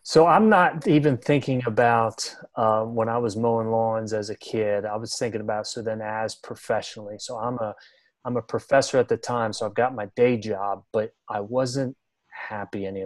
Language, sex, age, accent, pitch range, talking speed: English, male, 30-49, American, 105-125 Hz, 200 wpm